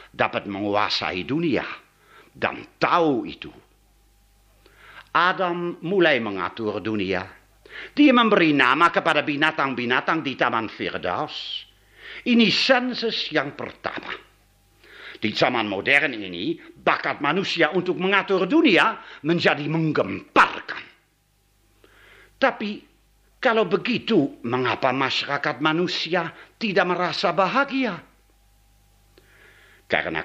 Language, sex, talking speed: Indonesian, male, 85 wpm